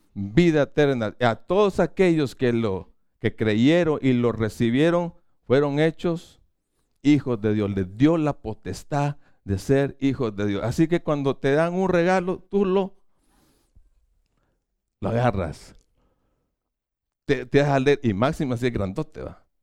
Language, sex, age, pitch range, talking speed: Spanish, male, 50-69, 100-160 Hz, 140 wpm